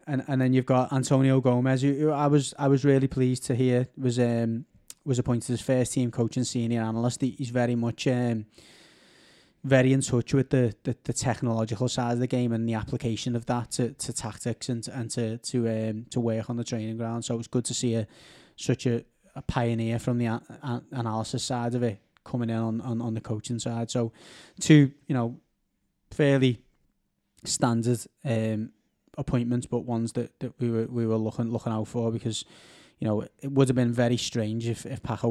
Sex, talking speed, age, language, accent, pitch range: male, 205 wpm, 20-39, English, British, 115-130 Hz